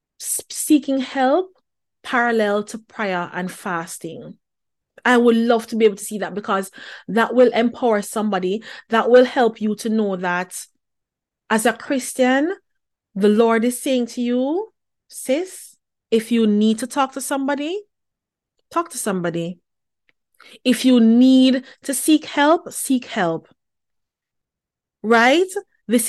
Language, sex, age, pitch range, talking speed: English, female, 30-49, 210-255 Hz, 135 wpm